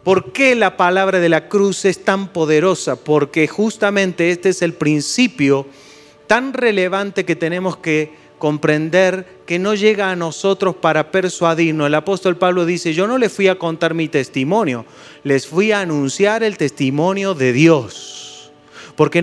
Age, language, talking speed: 30-49, Spanish, 155 wpm